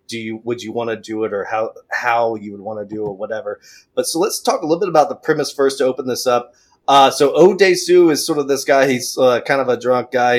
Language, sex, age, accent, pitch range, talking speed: English, male, 30-49, American, 115-140 Hz, 285 wpm